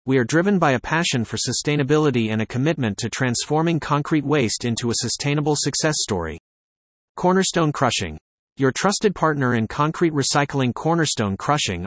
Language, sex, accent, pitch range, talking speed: English, male, American, 110-150 Hz, 150 wpm